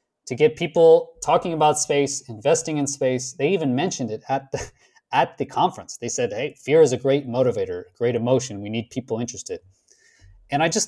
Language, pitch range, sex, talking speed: English, 120-180 Hz, male, 195 wpm